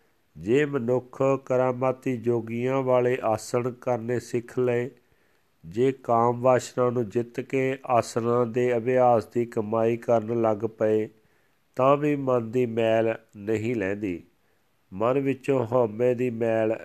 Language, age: Punjabi, 50-69